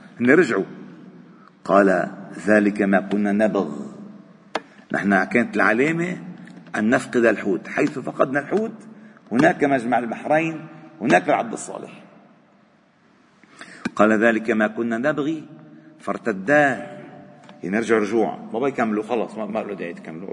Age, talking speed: 50-69, 110 wpm